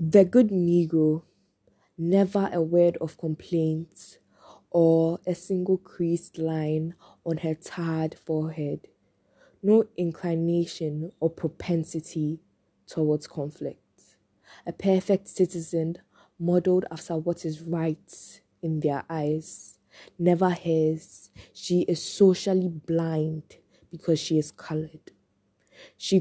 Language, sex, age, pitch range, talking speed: English, female, 20-39, 155-175 Hz, 105 wpm